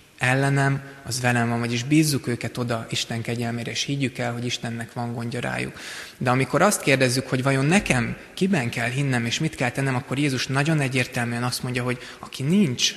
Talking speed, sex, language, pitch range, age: 190 wpm, male, Hungarian, 120-135 Hz, 20-39